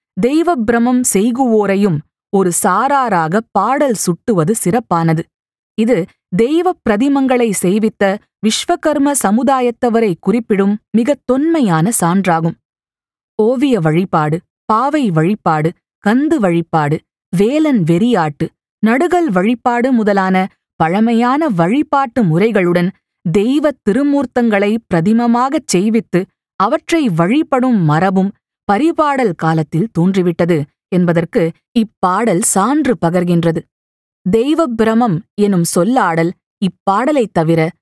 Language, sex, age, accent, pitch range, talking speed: Tamil, female, 20-39, native, 175-255 Hz, 80 wpm